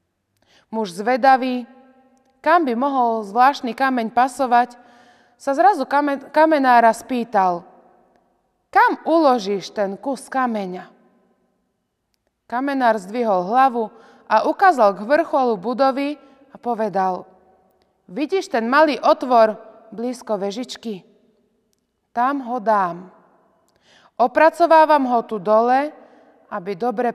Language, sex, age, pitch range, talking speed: Slovak, female, 20-39, 210-265 Hz, 95 wpm